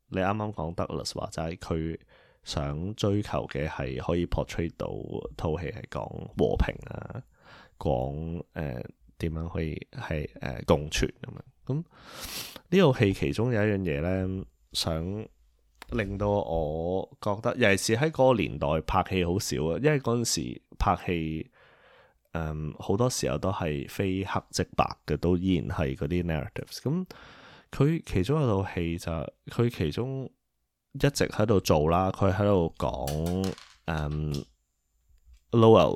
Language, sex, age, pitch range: Chinese, male, 20-39, 80-105 Hz